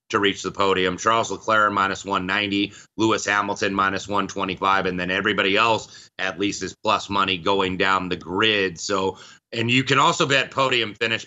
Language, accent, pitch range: English, American, 95-120 Hz